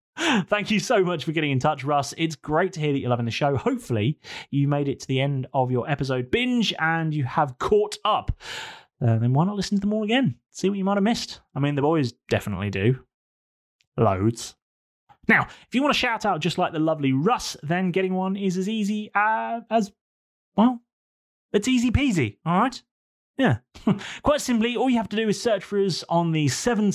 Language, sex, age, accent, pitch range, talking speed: English, male, 30-49, British, 130-205 Hz, 215 wpm